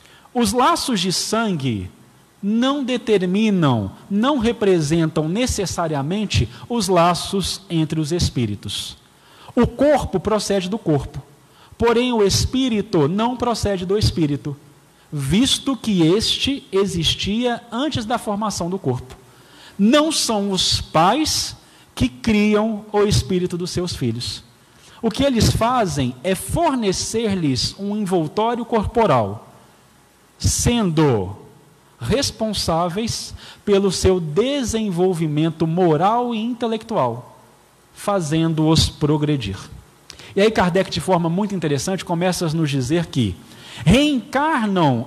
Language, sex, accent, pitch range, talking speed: Portuguese, male, Brazilian, 155-230 Hz, 105 wpm